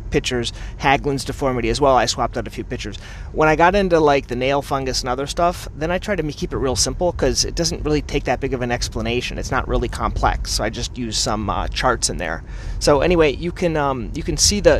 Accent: American